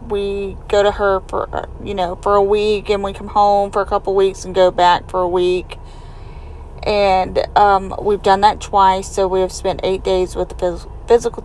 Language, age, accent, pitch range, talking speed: English, 40-59, American, 180-200 Hz, 210 wpm